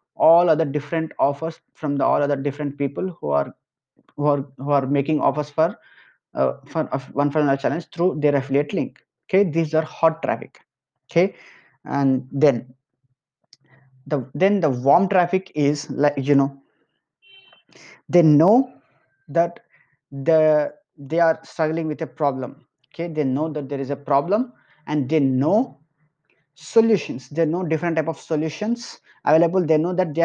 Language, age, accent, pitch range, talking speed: English, 20-39, Indian, 145-170 Hz, 155 wpm